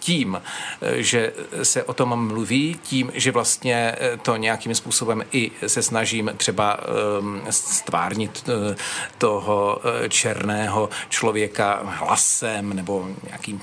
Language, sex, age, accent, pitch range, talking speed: Czech, male, 40-59, native, 105-120 Hz, 100 wpm